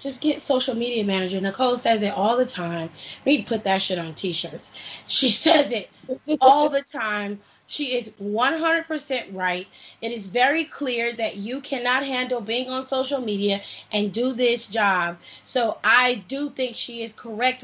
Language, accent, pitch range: English, American, 225-290 Hz